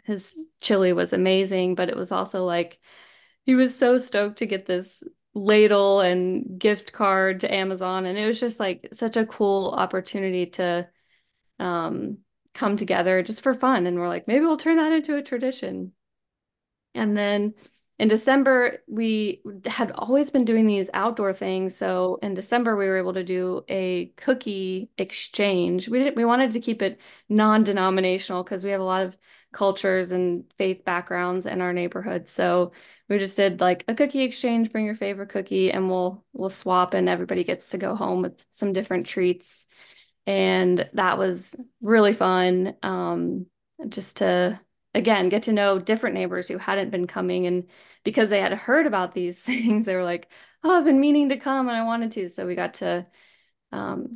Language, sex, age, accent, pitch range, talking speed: English, female, 20-39, American, 185-230 Hz, 180 wpm